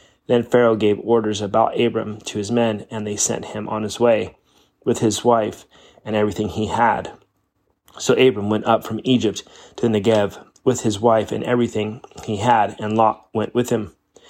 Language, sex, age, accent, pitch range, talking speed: English, male, 30-49, American, 105-115 Hz, 185 wpm